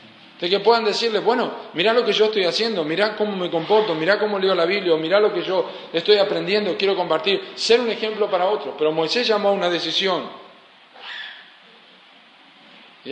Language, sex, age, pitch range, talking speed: Spanish, male, 50-69, 155-215 Hz, 185 wpm